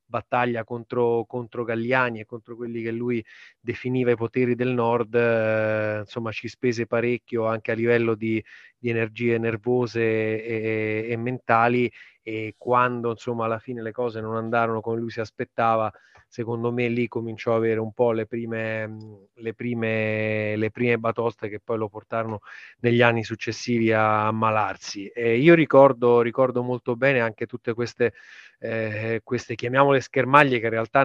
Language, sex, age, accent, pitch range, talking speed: Italian, male, 20-39, native, 110-120 Hz, 160 wpm